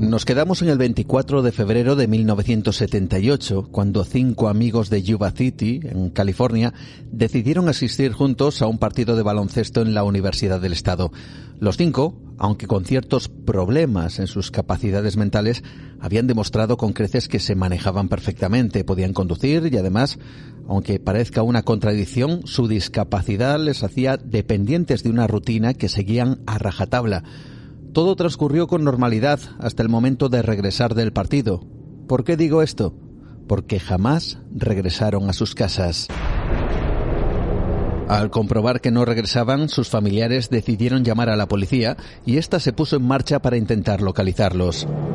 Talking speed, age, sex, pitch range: 145 wpm, 40-59, male, 105-130 Hz